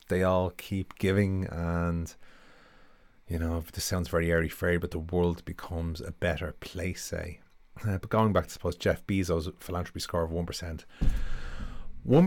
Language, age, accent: English, 30-49, Irish